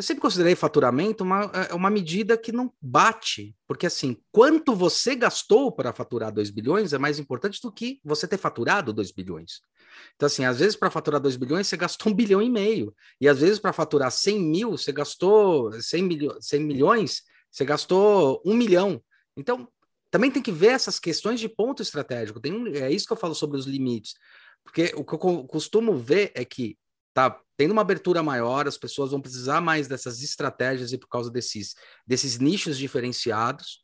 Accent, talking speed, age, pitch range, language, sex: Brazilian, 195 wpm, 30-49, 130-200 Hz, Portuguese, male